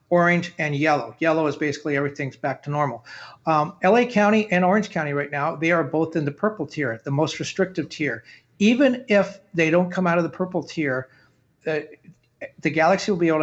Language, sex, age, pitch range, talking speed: English, male, 50-69, 150-180 Hz, 200 wpm